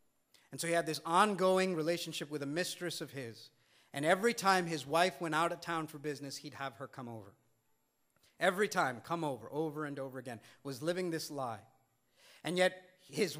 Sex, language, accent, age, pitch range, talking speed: male, English, American, 40-59, 135-185 Hz, 195 wpm